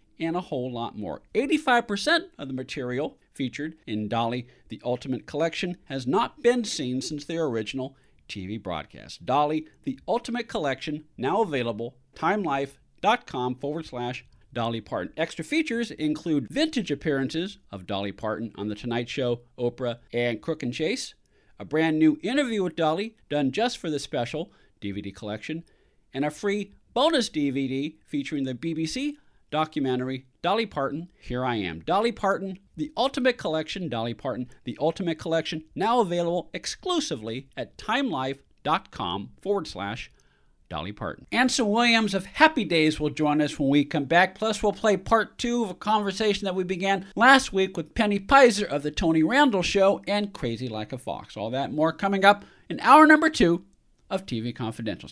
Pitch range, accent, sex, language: 125-200 Hz, American, male, English